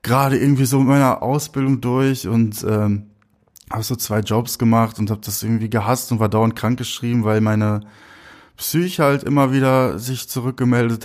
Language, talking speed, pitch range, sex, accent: German, 175 wpm, 105-120 Hz, male, German